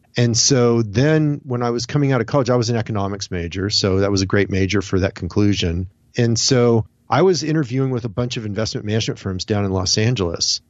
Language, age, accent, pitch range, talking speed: English, 40-59, American, 105-130 Hz, 225 wpm